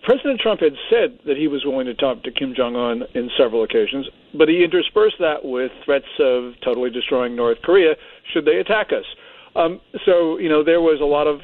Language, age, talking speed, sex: English, 50-69, 210 wpm, male